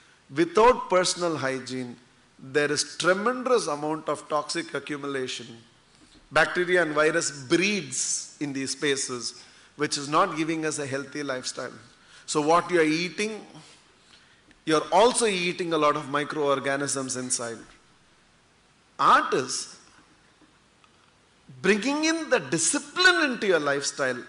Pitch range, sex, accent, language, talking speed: 145-240 Hz, male, Indian, English, 120 wpm